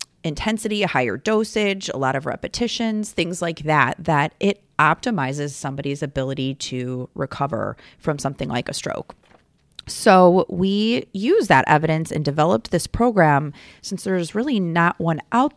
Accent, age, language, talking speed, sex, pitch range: American, 30-49, English, 145 wpm, female, 150-200 Hz